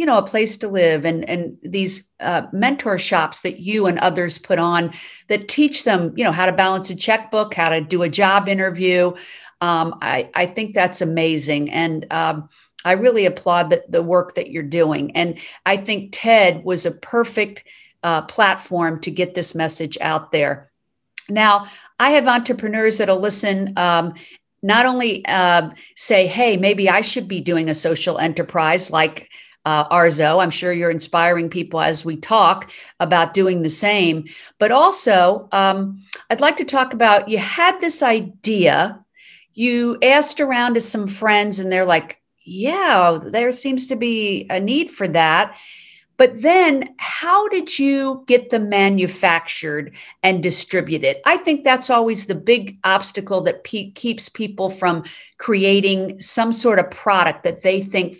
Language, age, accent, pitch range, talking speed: English, 50-69, American, 175-230 Hz, 165 wpm